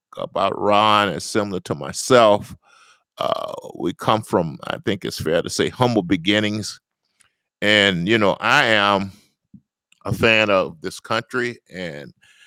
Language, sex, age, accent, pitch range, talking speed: English, male, 50-69, American, 95-115 Hz, 140 wpm